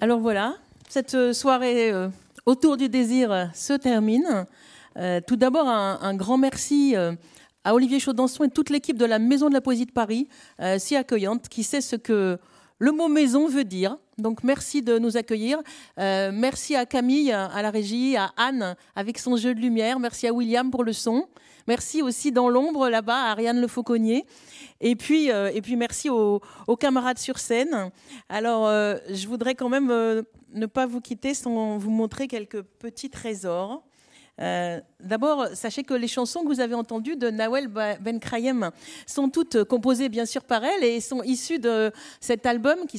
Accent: French